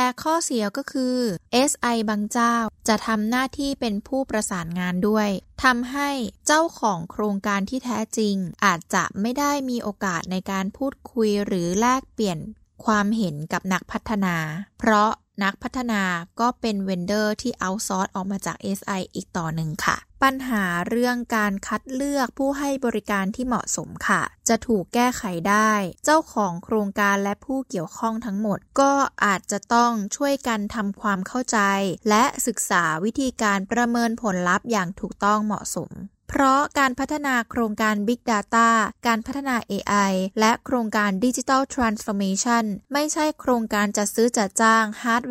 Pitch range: 200-250 Hz